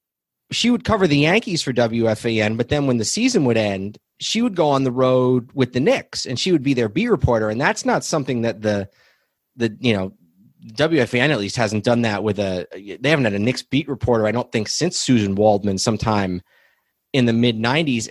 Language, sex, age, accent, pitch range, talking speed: English, male, 30-49, American, 110-140 Hz, 215 wpm